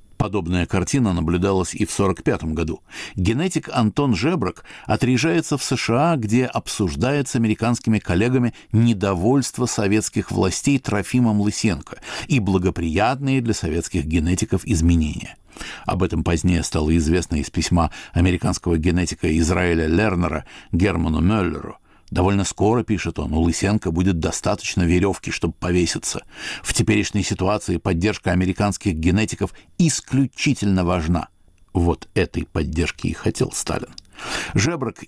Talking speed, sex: 115 wpm, male